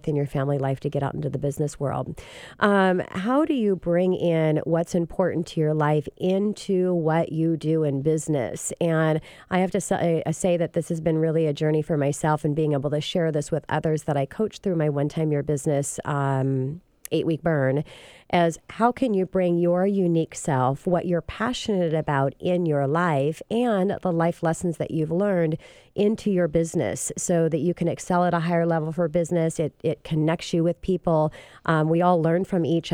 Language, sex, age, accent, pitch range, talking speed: English, female, 40-59, American, 150-175 Hz, 205 wpm